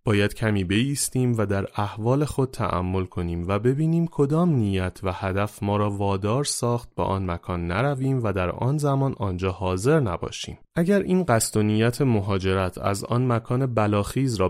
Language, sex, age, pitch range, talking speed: Persian, male, 30-49, 95-130 Hz, 170 wpm